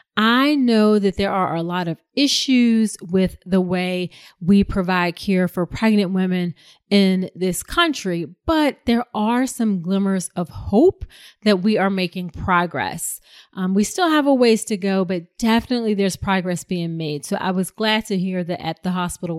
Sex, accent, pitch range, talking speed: female, American, 180-215 Hz, 175 wpm